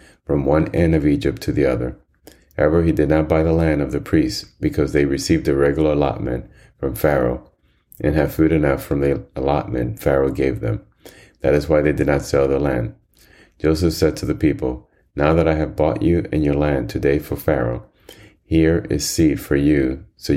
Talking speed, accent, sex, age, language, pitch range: 200 wpm, American, male, 30-49, English, 70-80 Hz